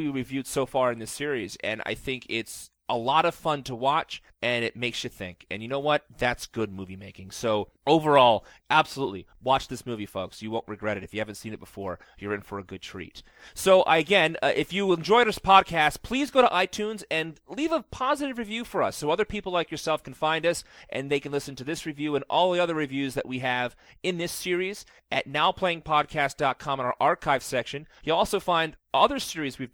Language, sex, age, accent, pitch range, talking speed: English, male, 30-49, American, 125-170 Hz, 220 wpm